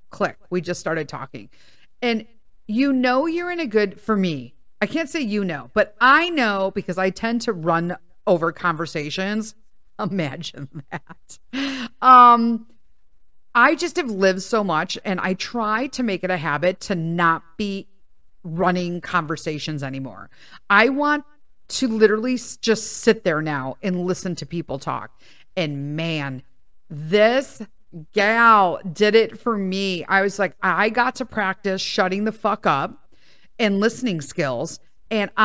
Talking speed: 150 wpm